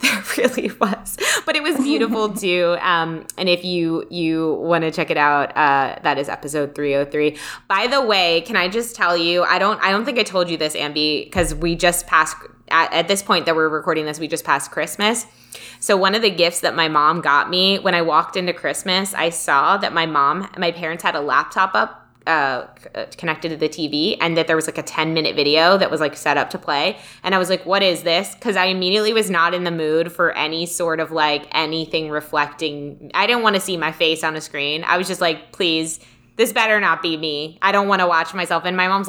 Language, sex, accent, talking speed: English, female, American, 245 wpm